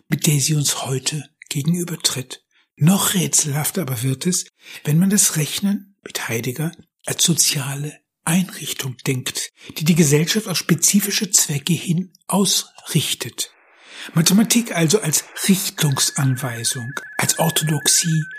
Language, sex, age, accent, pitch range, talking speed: German, male, 60-79, German, 145-185 Hz, 115 wpm